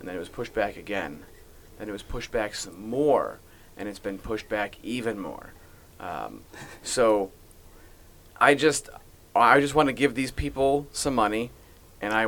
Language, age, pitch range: English, 30-49, 100-120 Hz